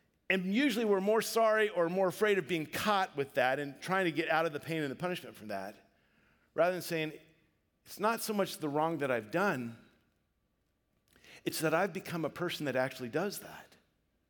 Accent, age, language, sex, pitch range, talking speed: American, 50-69, English, male, 145-205 Hz, 200 wpm